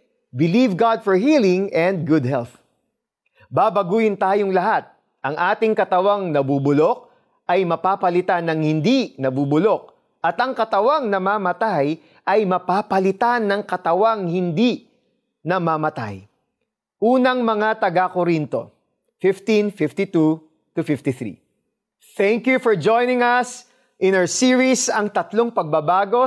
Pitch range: 175-235 Hz